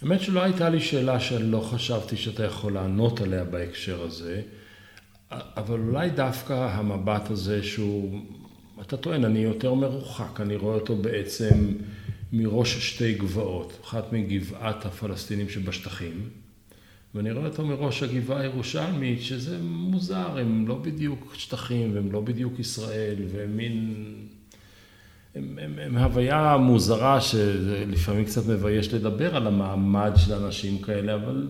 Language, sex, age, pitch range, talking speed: Hebrew, male, 50-69, 100-125 Hz, 130 wpm